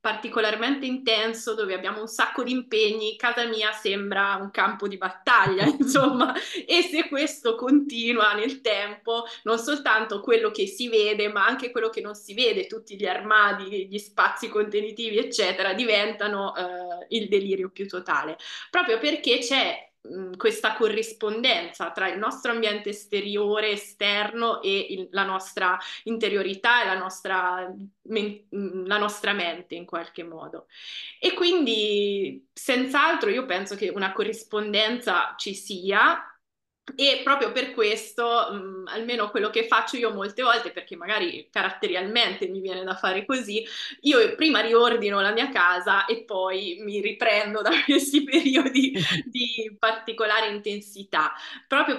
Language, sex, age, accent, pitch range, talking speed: Italian, female, 20-39, native, 200-245 Hz, 135 wpm